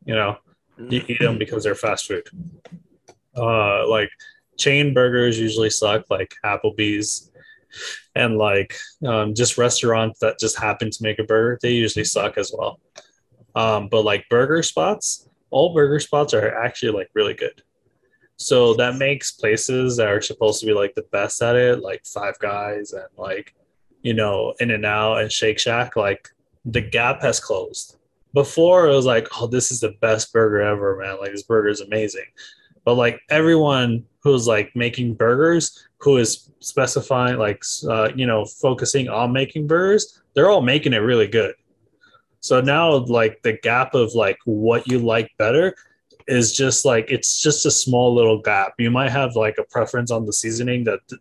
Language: English